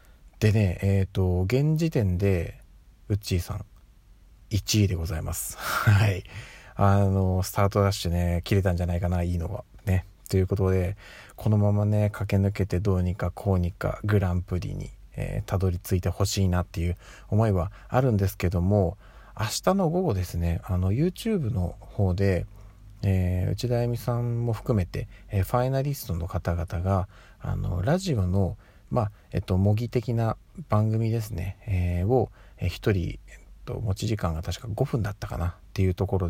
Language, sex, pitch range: Japanese, male, 90-105 Hz